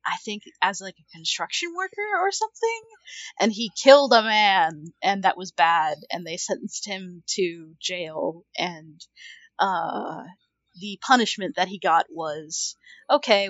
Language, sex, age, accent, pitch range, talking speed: English, female, 30-49, American, 190-300 Hz, 145 wpm